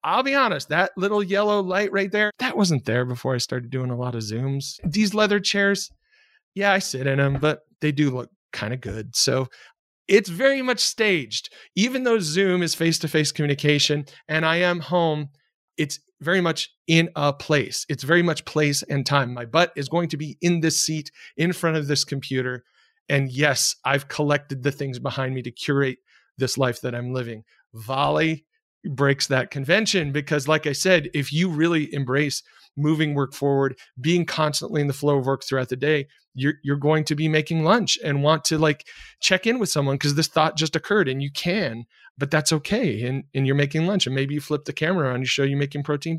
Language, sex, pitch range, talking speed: English, male, 140-185 Hz, 205 wpm